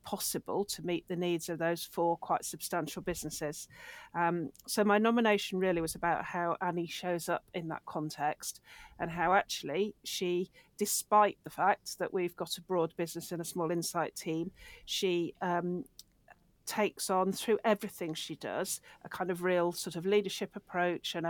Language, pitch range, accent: English, 170-190 Hz, British